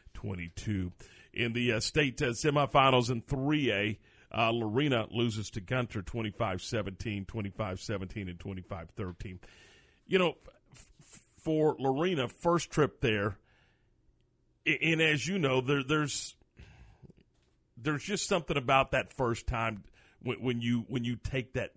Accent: American